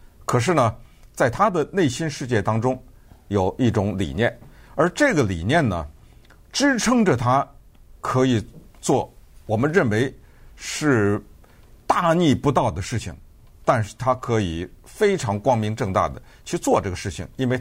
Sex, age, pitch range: male, 50-69, 100-130 Hz